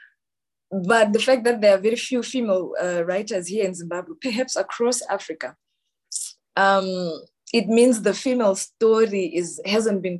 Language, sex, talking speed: English, female, 155 wpm